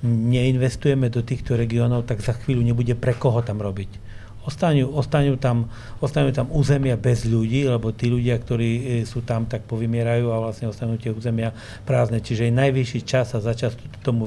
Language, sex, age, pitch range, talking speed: Slovak, male, 40-59, 115-135 Hz, 160 wpm